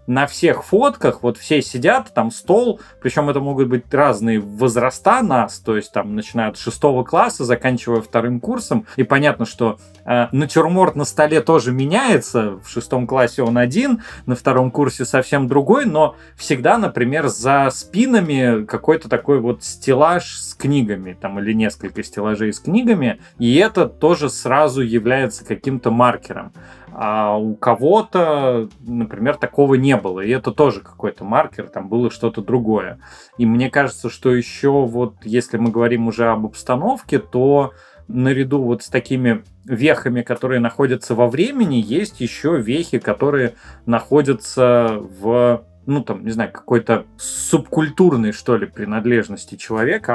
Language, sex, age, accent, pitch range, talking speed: Russian, male, 20-39, native, 115-140 Hz, 145 wpm